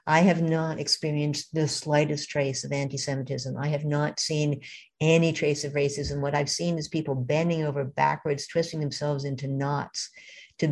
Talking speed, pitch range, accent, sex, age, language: 170 wpm, 145-180 Hz, American, female, 50-69, English